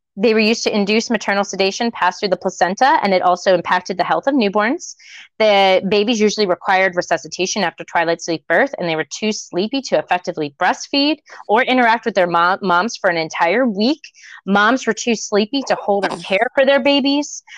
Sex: female